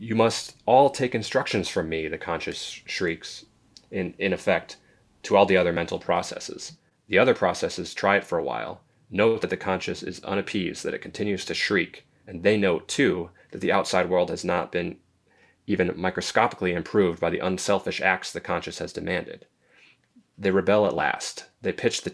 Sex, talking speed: male, 180 wpm